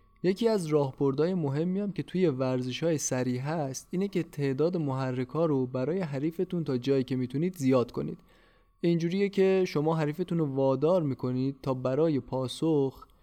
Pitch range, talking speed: 130-165 Hz, 160 wpm